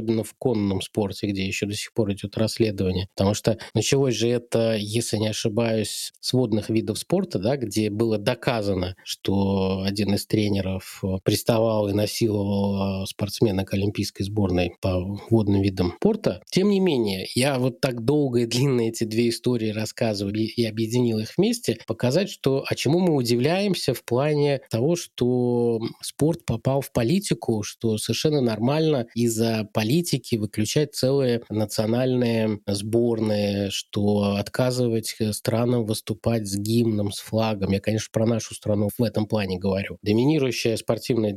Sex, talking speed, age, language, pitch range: male, 145 wpm, 20-39, Russian, 105-130 Hz